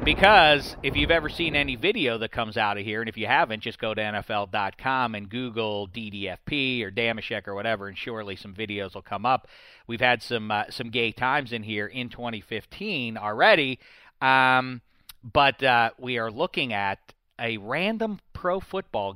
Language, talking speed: English, 180 wpm